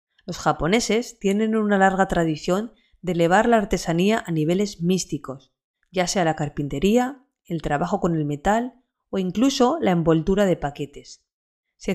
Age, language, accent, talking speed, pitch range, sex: 30-49, Spanish, Spanish, 145 wpm, 165-225 Hz, female